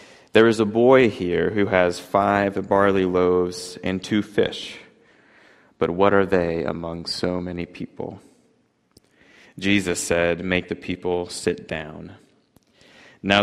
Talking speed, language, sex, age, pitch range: 130 wpm, English, male, 30-49, 90-100 Hz